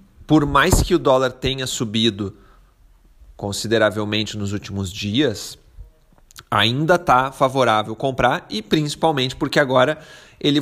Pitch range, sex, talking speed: 105-135 Hz, male, 115 wpm